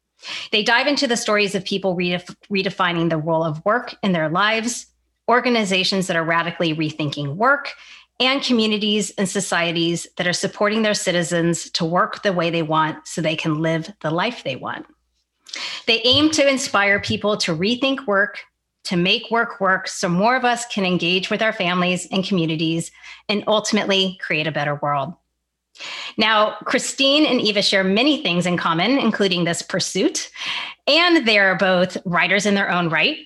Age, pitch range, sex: 30-49, 180-240 Hz, female